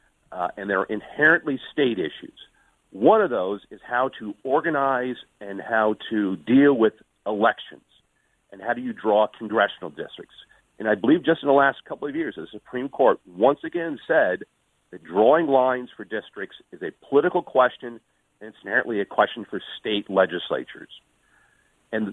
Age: 50-69